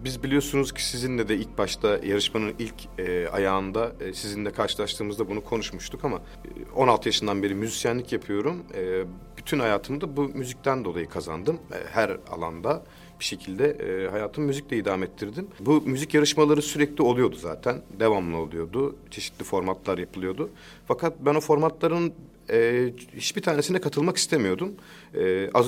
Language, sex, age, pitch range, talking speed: Turkish, male, 40-59, 100-145 Hz, 145 wpm